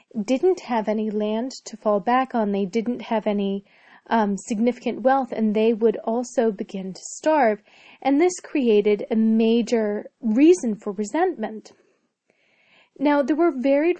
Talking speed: 145 wpm